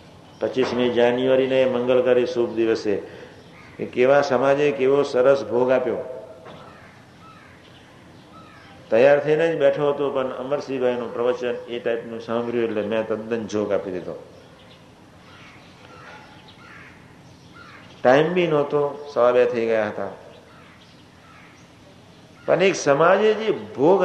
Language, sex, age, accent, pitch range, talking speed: Gujarati, male, 50-69, native, 115-145 Hz, 75 wpm